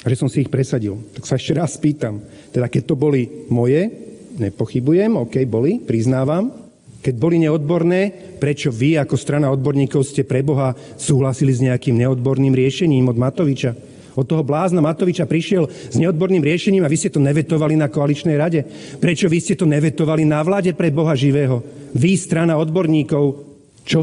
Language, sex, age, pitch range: Slovak, male, 40-59, 135-170 Hz